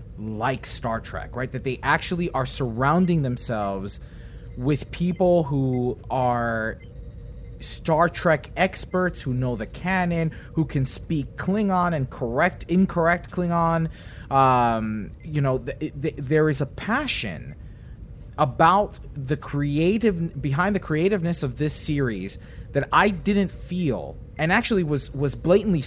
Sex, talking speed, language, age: male, 130 wpm, English, 30-49